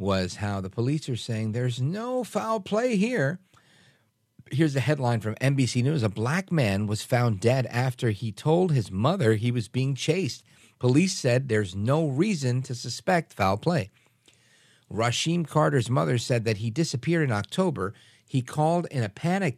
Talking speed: 170 wpm